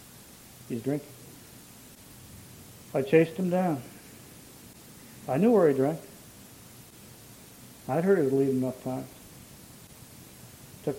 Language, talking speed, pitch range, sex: English, 110 wpm, 120-145 Hz, male